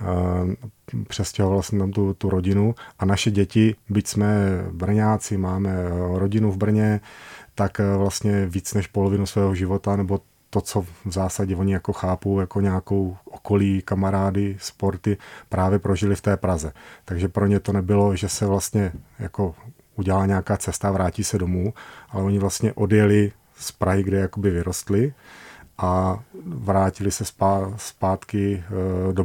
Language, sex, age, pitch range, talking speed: Czech, male, 30-49, 95-100 Hz, 145 wpm